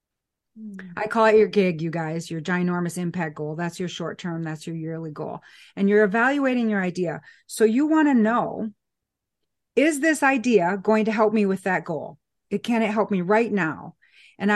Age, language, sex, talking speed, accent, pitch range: 40-59, English, female, 195 wpm, American, 190-245 Hz